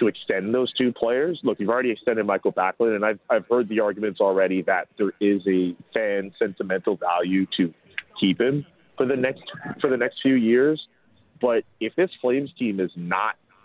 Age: 30-49